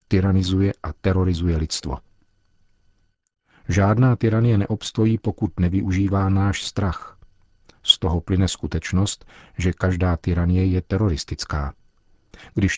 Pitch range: 85-100 Hz